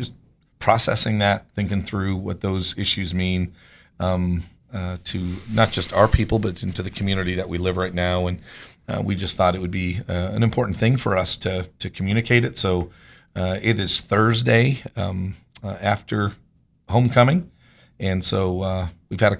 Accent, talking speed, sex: American, 175 wpm, male